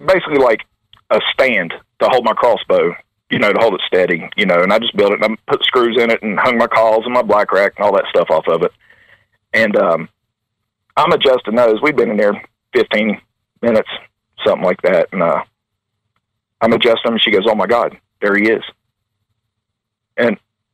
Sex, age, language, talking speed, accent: male, 40-59, English, 205 wpm, American